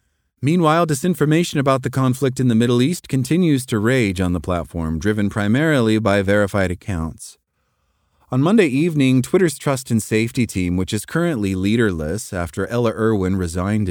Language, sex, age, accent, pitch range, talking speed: English, male, 30-49, American, 95-130 Hz, 155 wpm